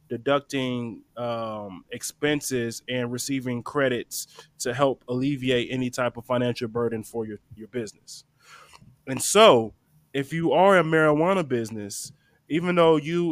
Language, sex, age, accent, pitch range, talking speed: English, male, 20-39, American, 125-160 Hz, 130 wpm